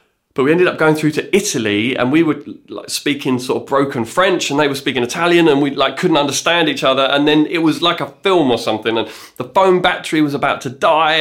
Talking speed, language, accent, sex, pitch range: 245 wpm, English, British, male, 130-160 Hz